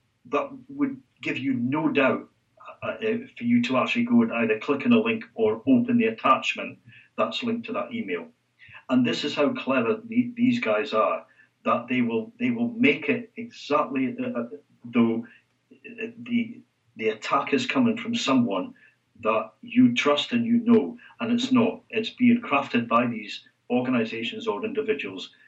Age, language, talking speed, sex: 50-69, English, 165 wpm, male